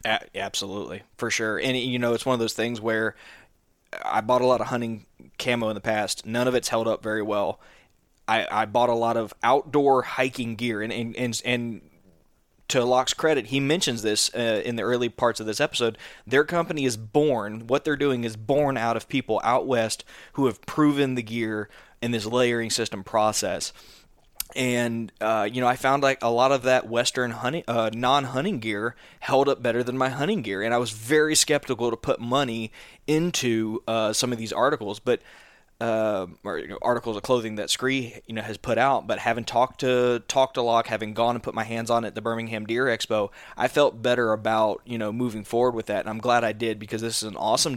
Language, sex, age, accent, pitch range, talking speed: English, male, 20-39, American, 110-130 Hz, 220 wpm